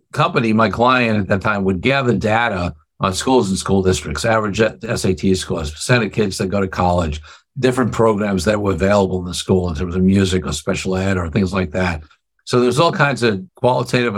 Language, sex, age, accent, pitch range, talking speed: English, male, 60-79, American, 95-115 Hz, 205 wpm